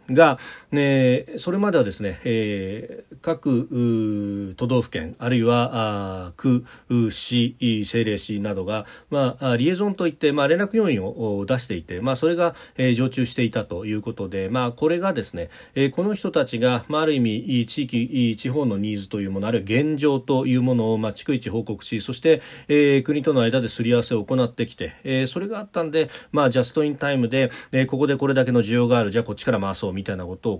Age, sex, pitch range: 40-59, male, 105-135 Hz